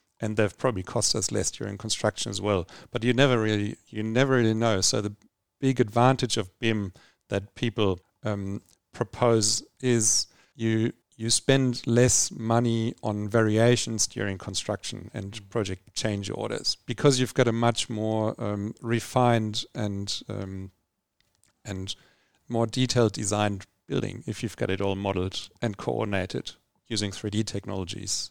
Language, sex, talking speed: English, male, 145 wpm